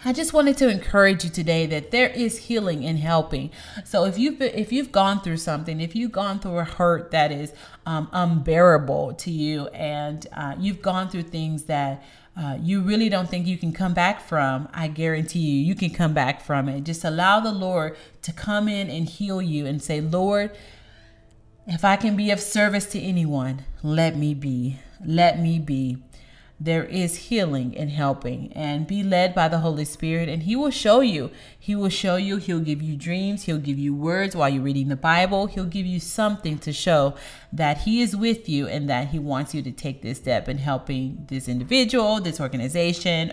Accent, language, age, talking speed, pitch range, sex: American, English, 30-49, 205 wpm, 150-195 Hz, female